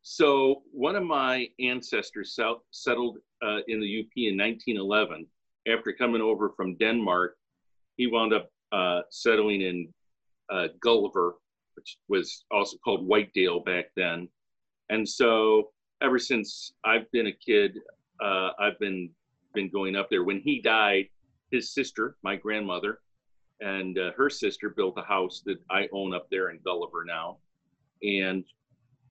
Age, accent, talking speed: 40-59, American, 145 wpm